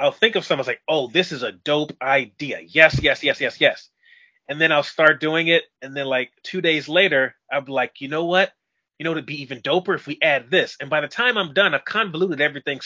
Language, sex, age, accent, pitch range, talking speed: English, male, 30-49, American, 145-190 Hz, 250 wpm